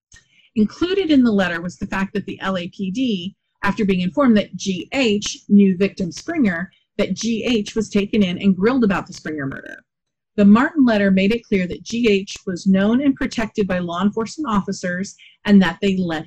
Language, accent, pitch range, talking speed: English, American, 190-235 Hz, 180 wpm